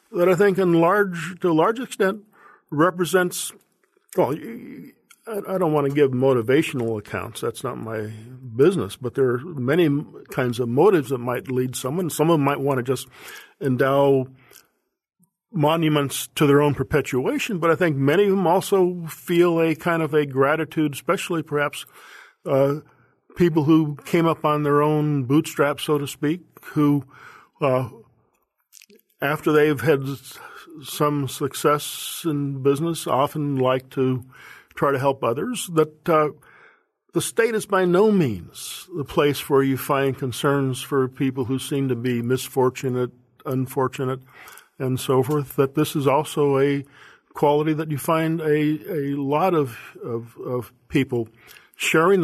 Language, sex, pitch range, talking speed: English, male, 130-165 Hz, 150 wpm